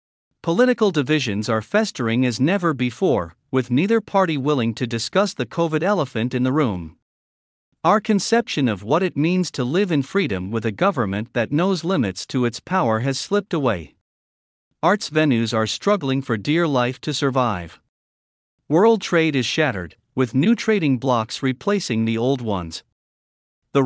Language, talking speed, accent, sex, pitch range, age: English, 160 wpm, American, male, 115-170 Hz, 50-69